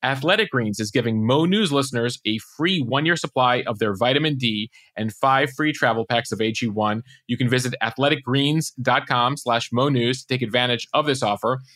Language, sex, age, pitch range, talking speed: English, male, 30-49, 120-155 Hz, 180 wpm